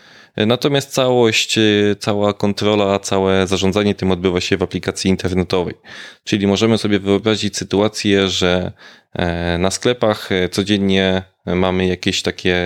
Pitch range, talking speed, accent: 90-110 Hz, 115 wpm, native